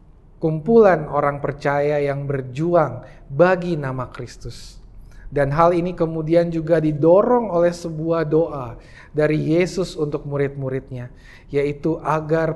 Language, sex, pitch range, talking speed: Indonesian, male, 140-195 Hz, 110 wpm